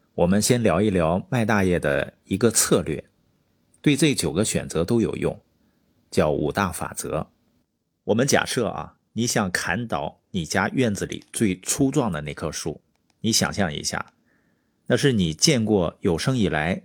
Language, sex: Chinese, male